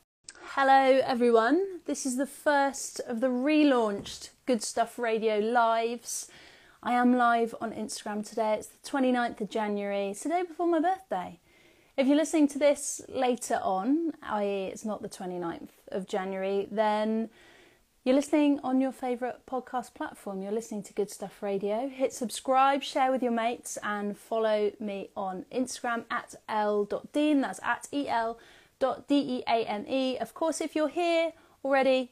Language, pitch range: English, 210-275 Hz